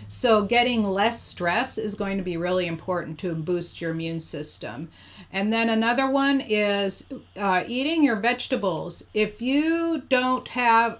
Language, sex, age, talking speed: English, female, 40-59, 155 wpm